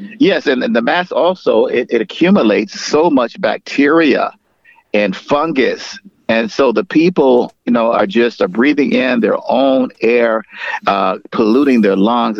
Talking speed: 155 wpm